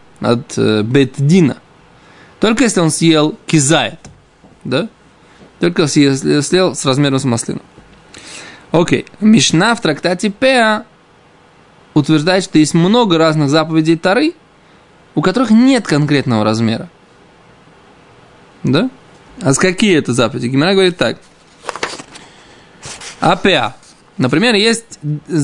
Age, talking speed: 20-39, 110 wpm